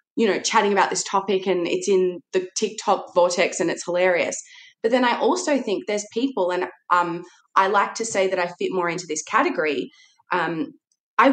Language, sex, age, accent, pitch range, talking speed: English, female, 20-39, Australian, 180-250 Hz, 195 wpm